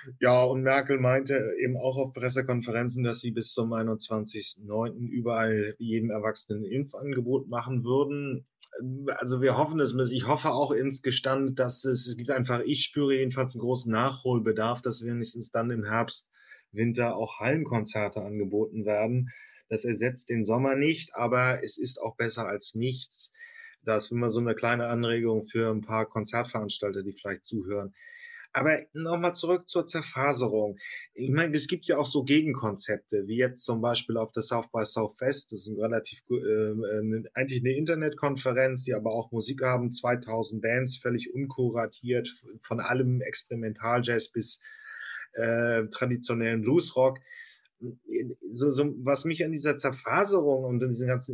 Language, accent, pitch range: German, German, 115-135 Hz